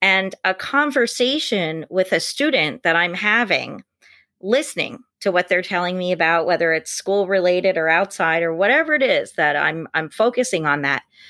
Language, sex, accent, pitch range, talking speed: English, female, American, 185-255 Hz, 170 wpm